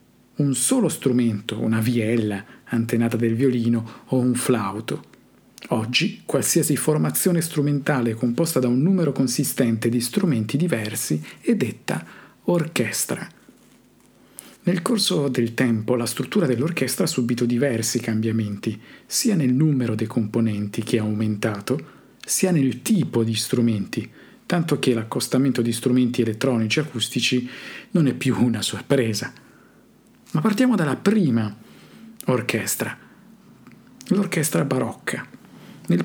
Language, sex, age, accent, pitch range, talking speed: Italian, male, 50-69, native, 115-155 Hz, 120 wpm